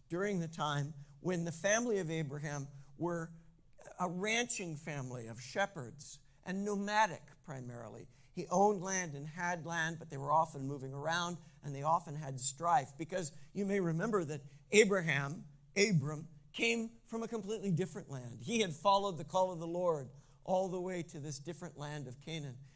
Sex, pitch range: male, 140-180 Hz